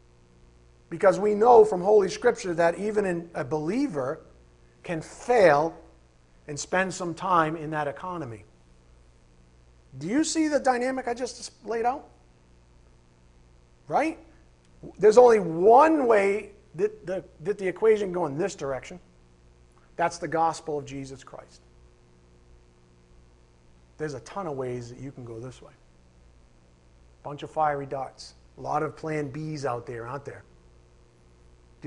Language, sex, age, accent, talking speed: English, male, 40-59, American, 140 wpm